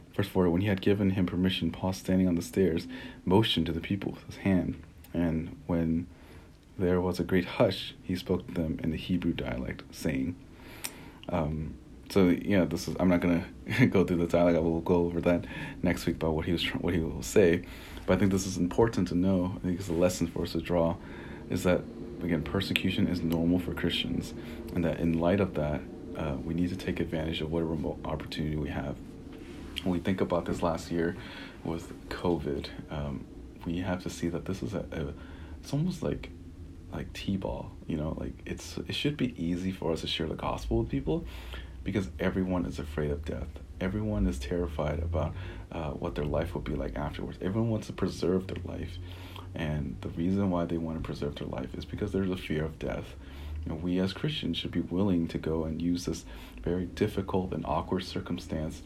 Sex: male